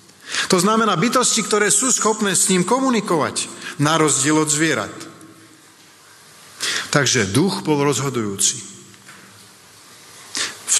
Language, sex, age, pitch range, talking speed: Slovak, male, 50-69, 115-170 Hz, 100 wpm